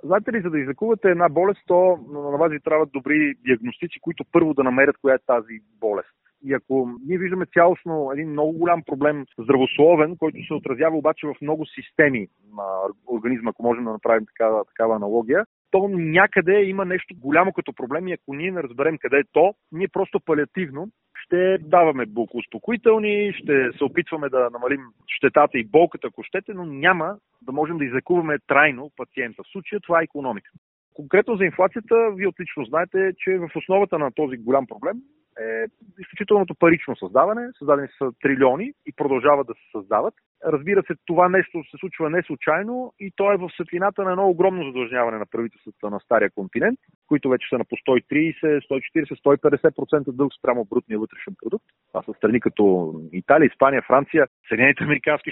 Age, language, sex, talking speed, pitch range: 40-59, Bulgarian, male, 175 wpm, 135-190 Hz